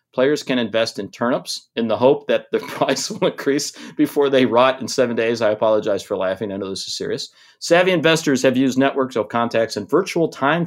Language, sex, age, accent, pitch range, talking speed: English, male, 40-59, American, 115-145 Hz, 215 wpm